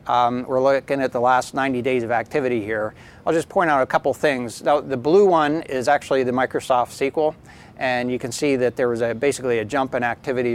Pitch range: 115-135 Hz